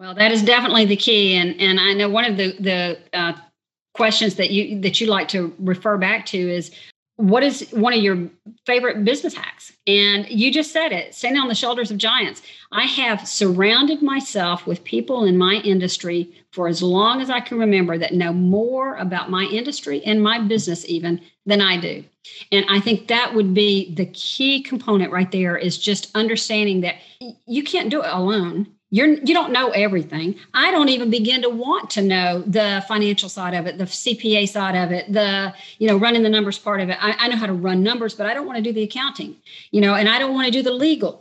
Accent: American